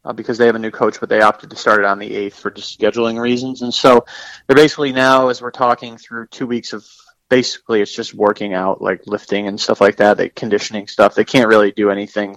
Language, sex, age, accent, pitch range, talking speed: English, male, 30-49, American, 110-130 Hz, 250 wpm